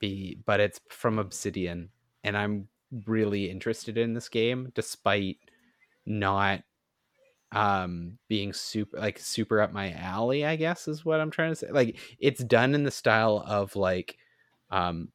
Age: 30-49